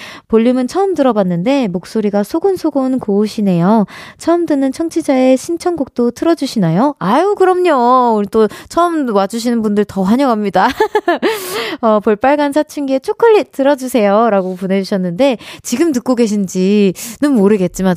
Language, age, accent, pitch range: Korean, 20-39, native, 185-270 Hz